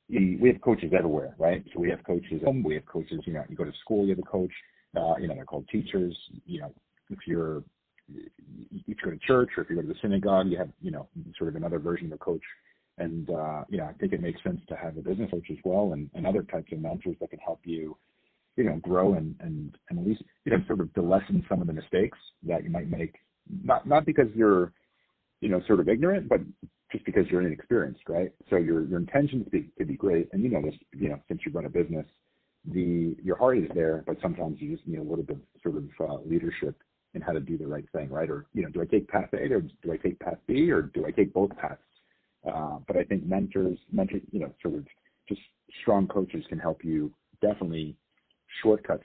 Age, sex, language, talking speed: 40-59, male, English, 245 wpm